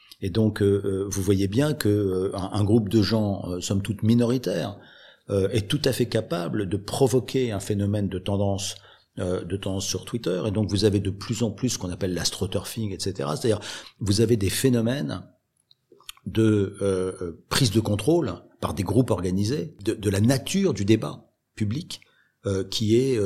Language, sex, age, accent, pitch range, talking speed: French, male, 50-69, French, 100-125 Hz, 180 wpm